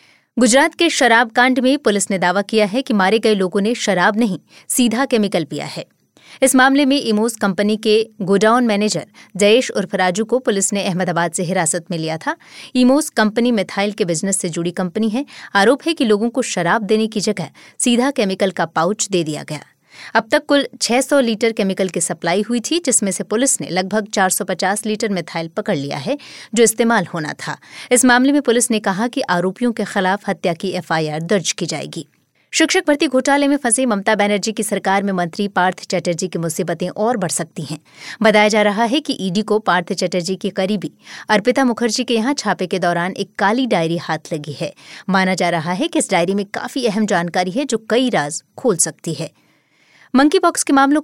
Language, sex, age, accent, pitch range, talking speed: Hindi, female, 20-39, native, 185-240 Hz, 200 wpm